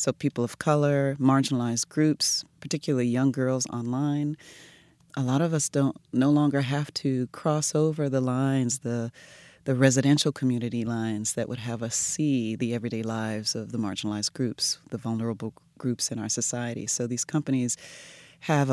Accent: American